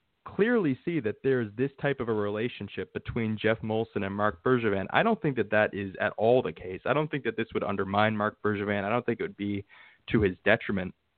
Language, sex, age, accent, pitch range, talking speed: English, male, 20-39, American, 100-125 Hz, 230 wpm